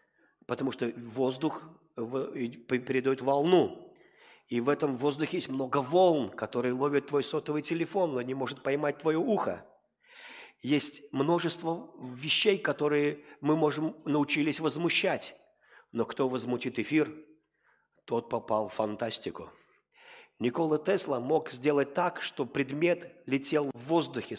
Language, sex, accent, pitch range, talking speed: Russian, male, native, 135-165 Hz, 120 wpm